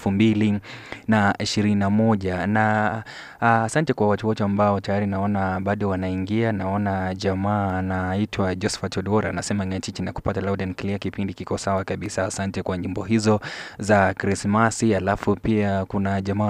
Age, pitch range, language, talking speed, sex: 20-39, 95-105 Hz, Swahili, 140 wpm, male